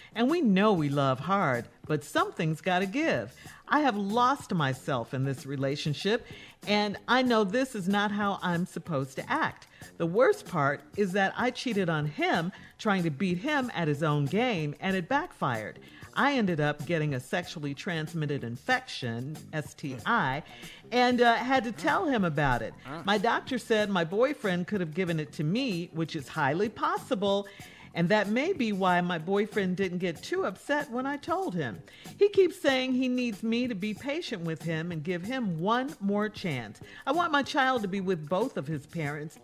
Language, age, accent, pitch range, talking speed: English, 50-69, American, 165-255 Hz, 190 wpm